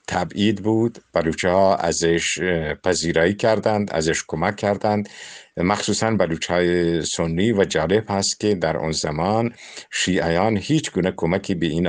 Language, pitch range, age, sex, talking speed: English, 85-100 Hz, 50-69, male, 135 wpm